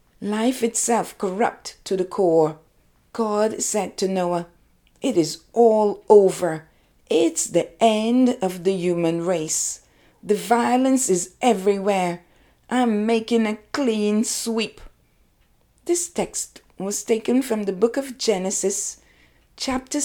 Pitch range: 175-240 Hz